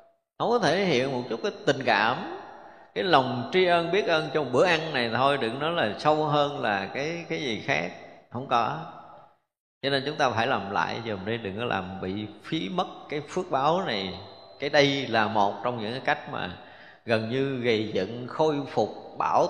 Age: 20-39